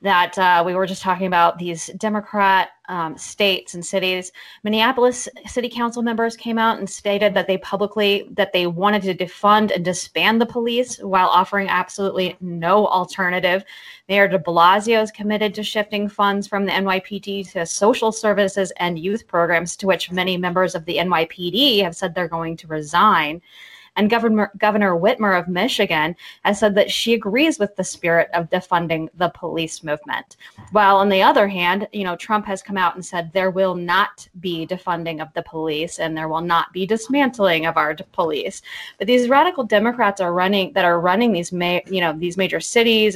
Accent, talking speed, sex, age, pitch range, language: American, 185 wpm, female, 20-39, 175-210 Hz, English